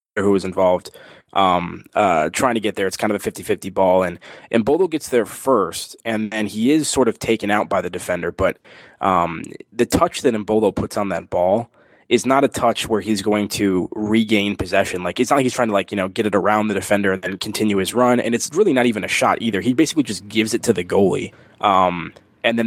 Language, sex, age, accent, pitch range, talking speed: English, male, 20-39, American, 100-120 Hz, 240 wpm